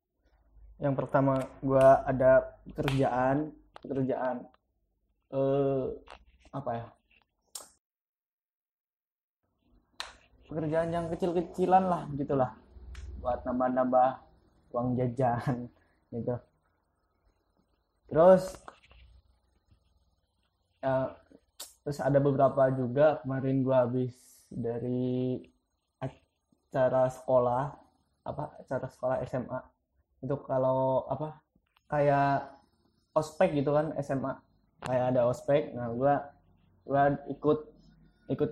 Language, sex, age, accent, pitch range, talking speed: Indonesian, male, 20-39, native, 120-145 Hz, 80 wpm